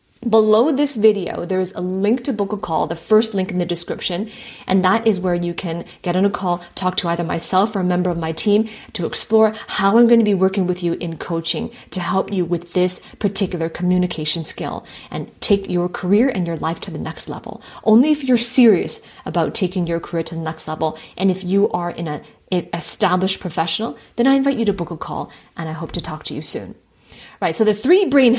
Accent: American